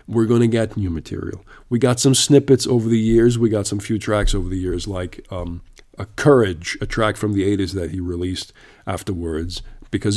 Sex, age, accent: male, 50-69, American